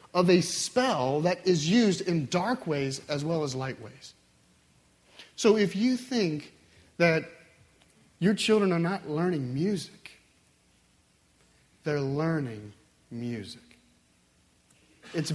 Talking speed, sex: 115 wpm, male